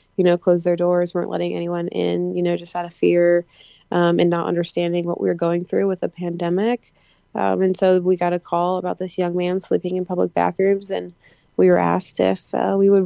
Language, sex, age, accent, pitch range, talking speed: English, female, 20-39, American, 175-195 Hz, 230 wpm